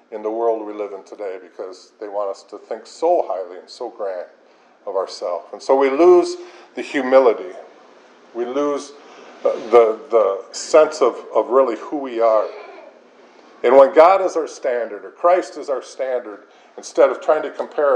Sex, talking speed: male, 180 wpm